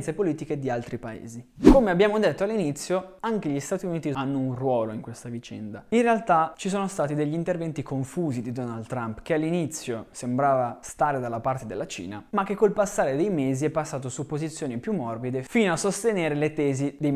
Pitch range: 125-180 Hz